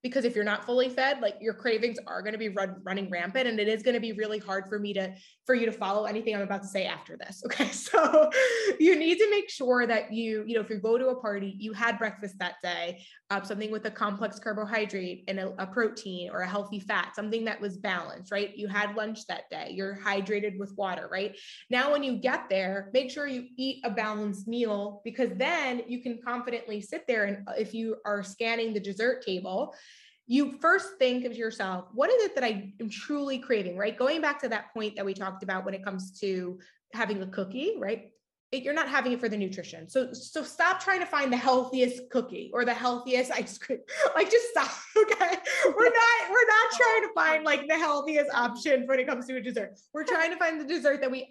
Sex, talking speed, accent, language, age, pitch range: female, 230 wpm, American, English, 20-39, 205-265 Hz